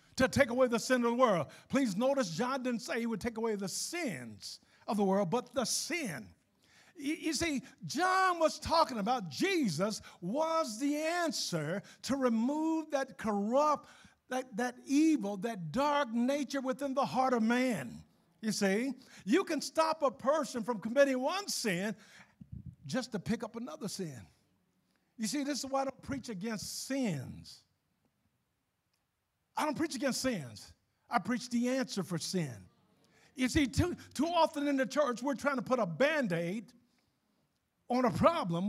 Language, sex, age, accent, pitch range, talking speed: English, male, 50-69, American, 210-285 Hz, 165 wpm